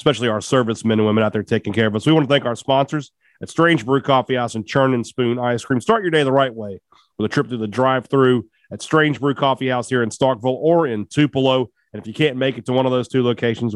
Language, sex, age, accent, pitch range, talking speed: English, male, 40-59, American, 120-150 Hz, 270 wpm